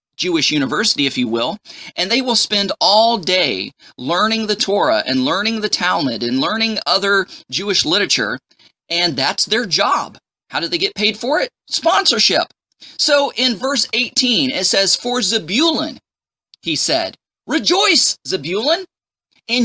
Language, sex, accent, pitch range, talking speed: English, male, American, 190-265 Hz, 145 wpm